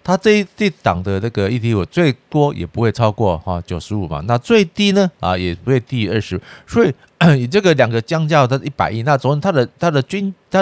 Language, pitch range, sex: Chinese, 105-145 Hz, male